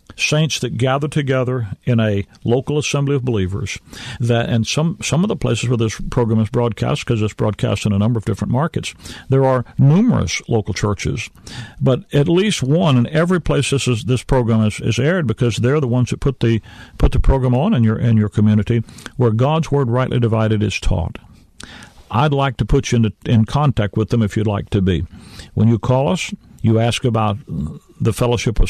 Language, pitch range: English, 105-130 Hz